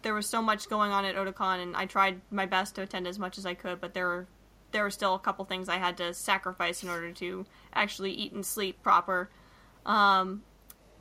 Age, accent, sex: 10-29, American, female